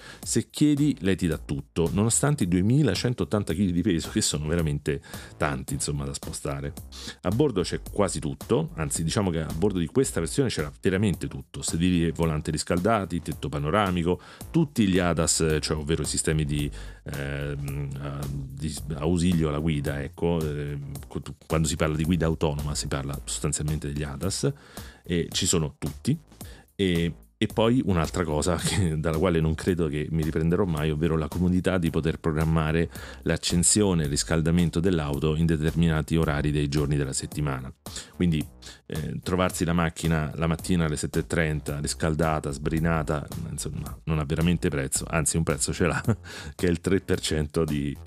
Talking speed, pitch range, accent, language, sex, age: 160 wpm, 75-90 Hz, native, Italian, male, 40-59